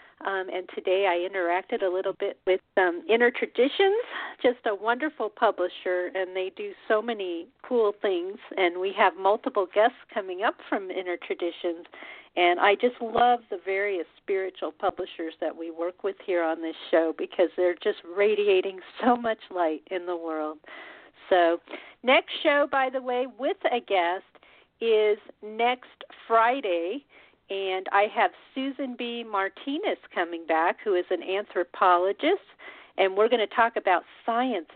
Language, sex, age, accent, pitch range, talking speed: English, female, 50-69, American, 180-245 Hz, 155 wpm